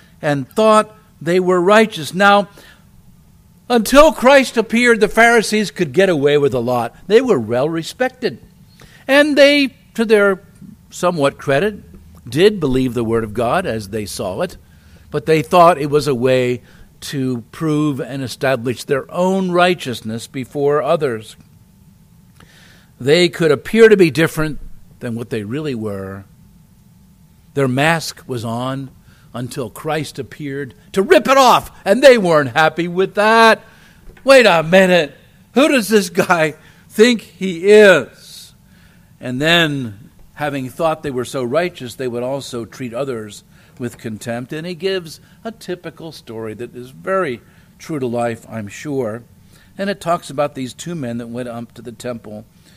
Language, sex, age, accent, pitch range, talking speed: English, male, 50-69, American, 120-190 Hz, 150 wpm